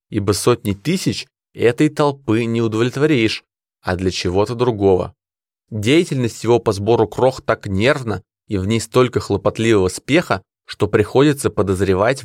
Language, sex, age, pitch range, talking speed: Russian, male, 20-39, 100-120 Hz, 130 wpm